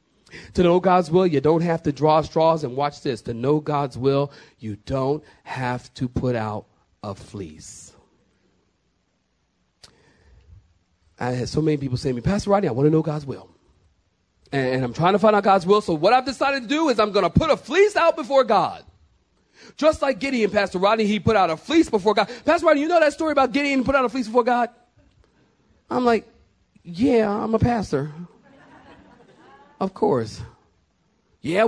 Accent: American